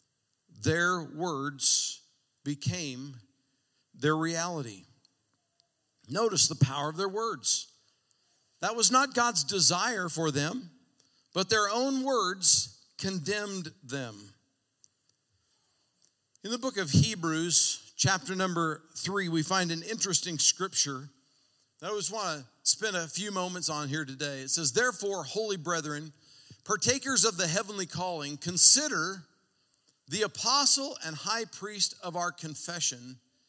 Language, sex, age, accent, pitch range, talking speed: English, male, 50-69, American, 140-195 Hz, 120 wpm